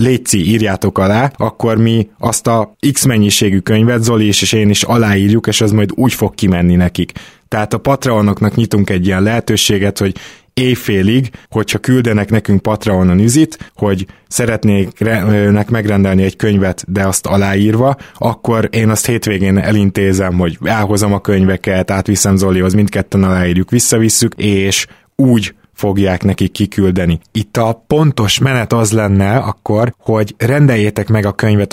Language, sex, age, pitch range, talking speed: Hungarian, male, 20-39, 100-115 Hz, 145 wpm